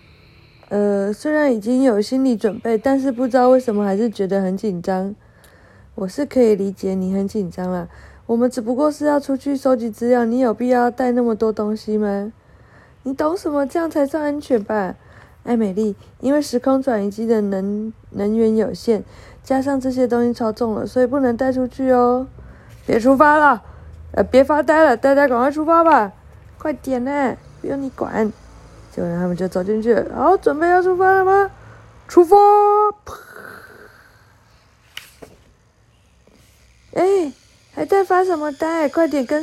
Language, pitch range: Chinese, 185-270 Hz